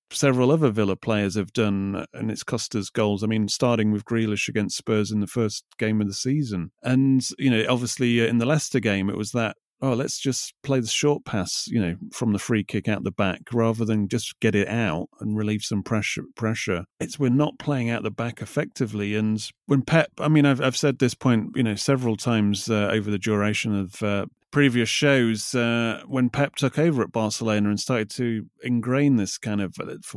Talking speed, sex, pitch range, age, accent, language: 215 wpm, male, 105-130 Hz, 30-49, British, English